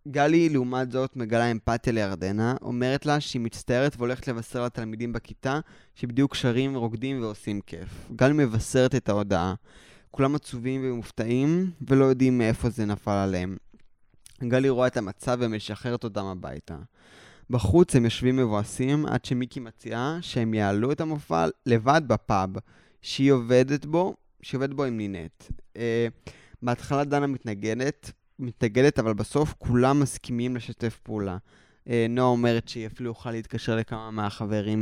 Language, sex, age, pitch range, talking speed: Hebrew, male, 20-39, 110-135 Hz, 135 wpm